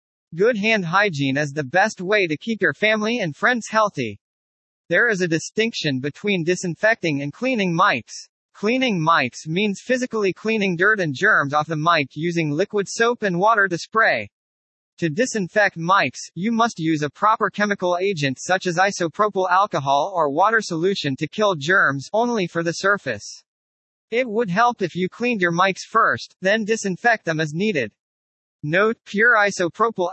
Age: 40-59